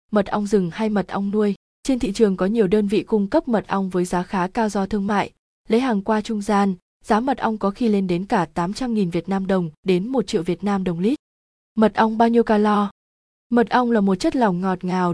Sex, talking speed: female, 245 wpm